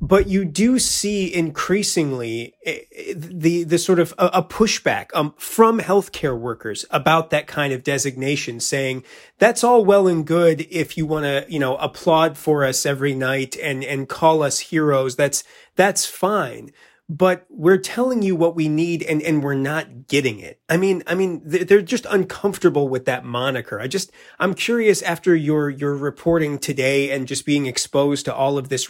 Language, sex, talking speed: English, male, 180 wpm